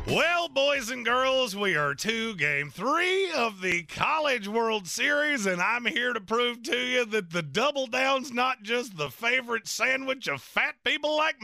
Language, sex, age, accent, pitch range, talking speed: English, male, 30-49, American, 160-245 Hz, 180 wpm